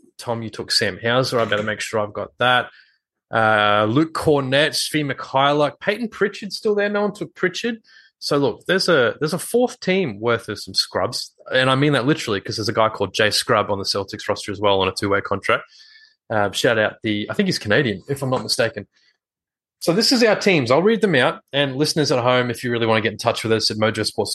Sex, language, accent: male, English, Australian